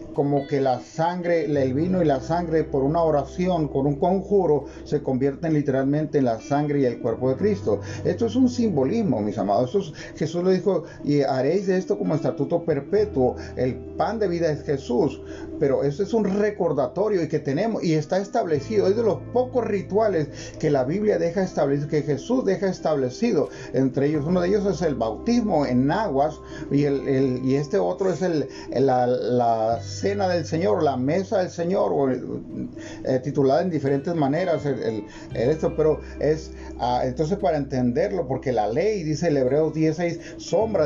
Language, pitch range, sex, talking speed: Spanish, 135-180 Hz, male, 175 wpm